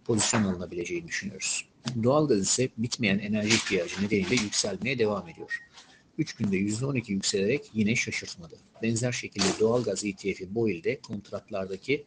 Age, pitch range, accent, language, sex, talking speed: 60-79, 100-125 Hz, native, Turkish, male, 135 wpm